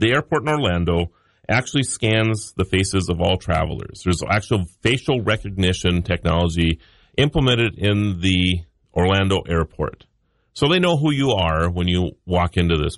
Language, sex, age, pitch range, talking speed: English, male, 40-59, 90-130 Hz, 150 wpm